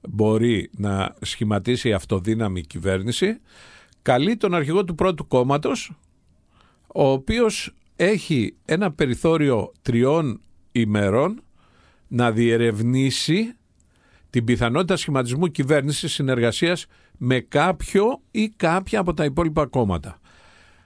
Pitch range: 105-155 Hz